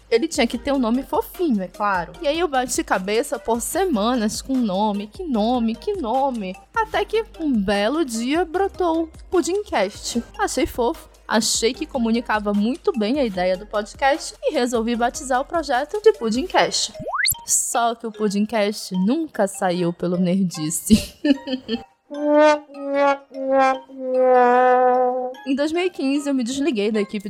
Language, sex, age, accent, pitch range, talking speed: Portuguese, female, 20-39, Brazilian, 225-300 Hz, 140 wpm